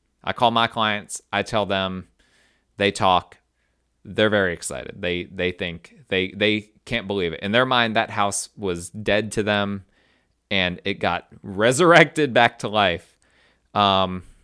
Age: 30-49